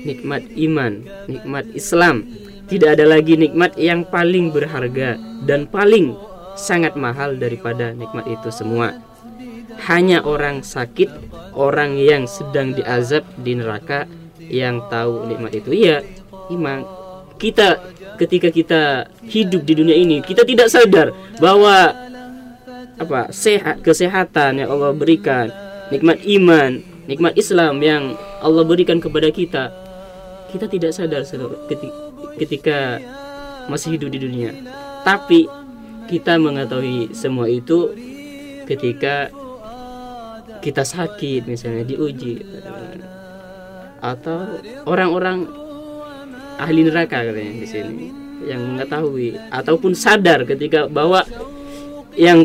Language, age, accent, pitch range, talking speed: Indonesian, 20-39, native, 140-195 Hz, 105 wpm